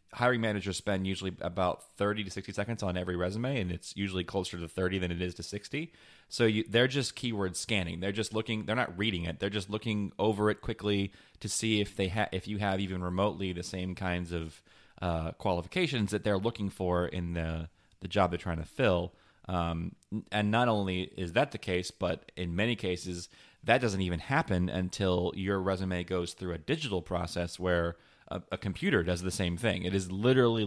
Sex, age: male, 30-49